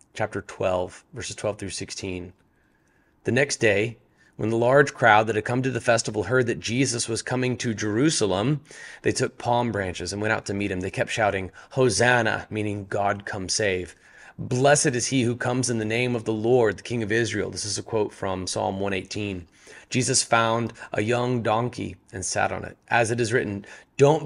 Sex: male